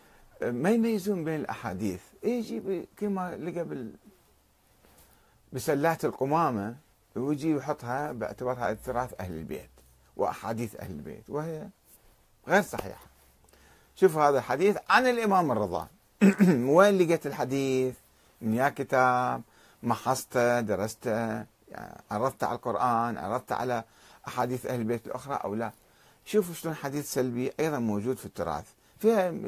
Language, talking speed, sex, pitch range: Arabic, 115 wpm, male, 110-170 Hz